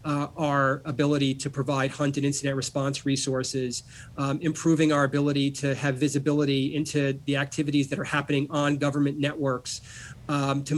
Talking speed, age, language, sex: 155 wpm, 40-59, English, male